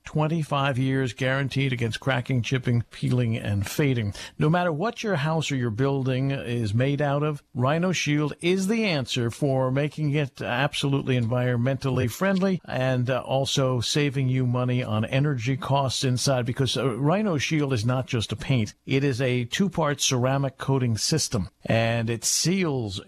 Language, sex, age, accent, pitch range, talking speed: English, male, 50-69, American, 125-150 Hz, 155 wpm